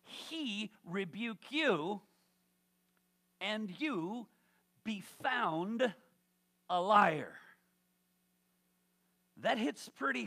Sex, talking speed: male, 70 wpm